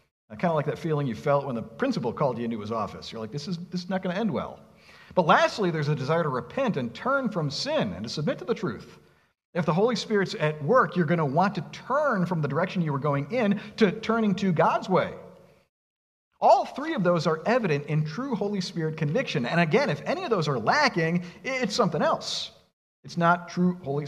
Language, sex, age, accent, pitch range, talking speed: English, male, 50-69, American, 150-215 Hz, 235 wpm